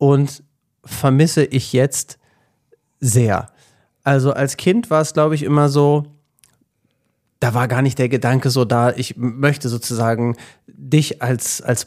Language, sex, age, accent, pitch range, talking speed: German, male, 30-49, German, 120-145 Hz, 140 wpm